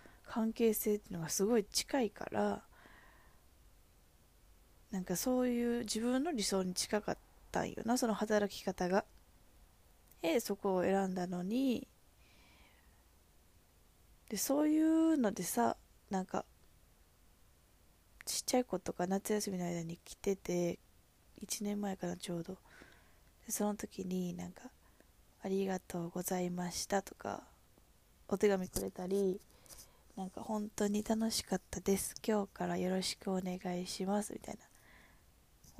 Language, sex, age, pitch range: Japanese, female, 20-39, 175-210 Hz